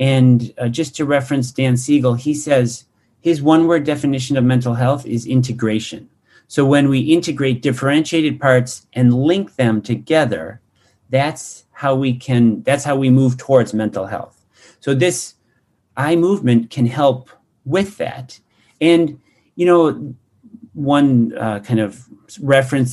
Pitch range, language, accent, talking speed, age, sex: 120-150 Hz, English, American, 145 wpm, 40-59, male